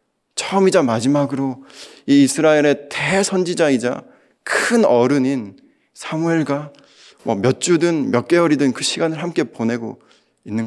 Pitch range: 125-200 Hz